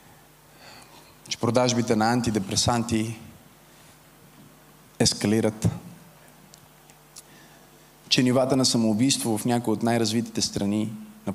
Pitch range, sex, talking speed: 110-145 Hz, male, 80 wpm